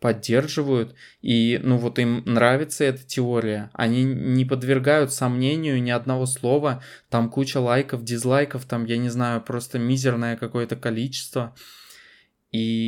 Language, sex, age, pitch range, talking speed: Russian, male, 20-39, 115-135 Hz, 130 wpm